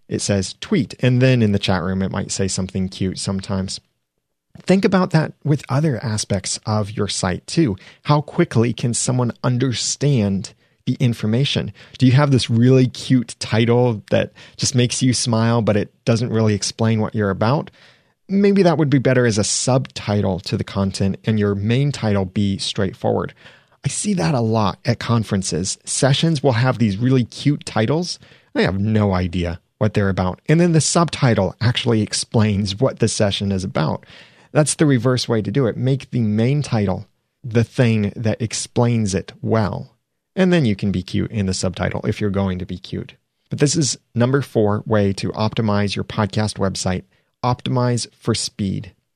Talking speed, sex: 180 wpm, male